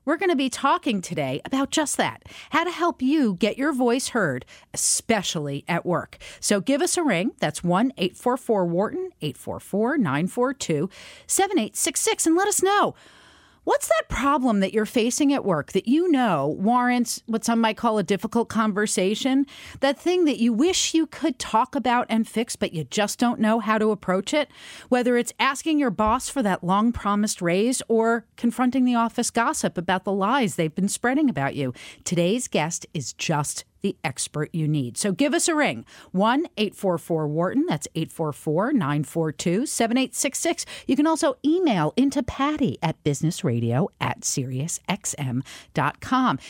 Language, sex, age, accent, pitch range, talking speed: English, female, 40-59, American, 185-280 Hz, 160 wpm